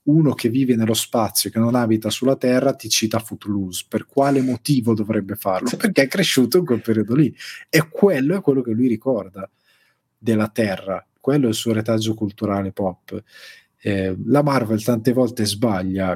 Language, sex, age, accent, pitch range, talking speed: Italian, male, 30-49, native, 105-135 Hz, 180 wpm